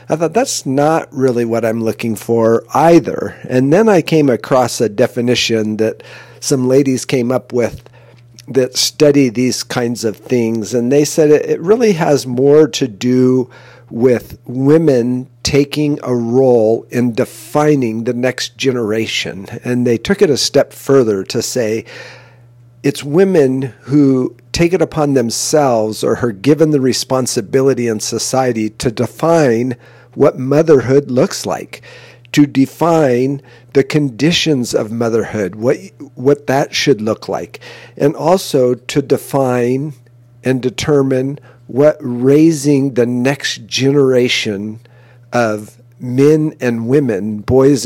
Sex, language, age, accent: male, English, 50-69, American